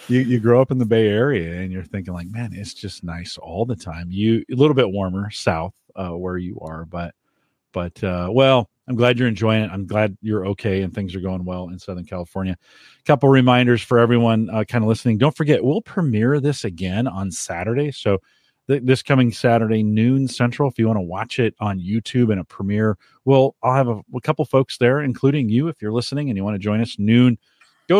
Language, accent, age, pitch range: English, American, 40-59, 95-130 Hz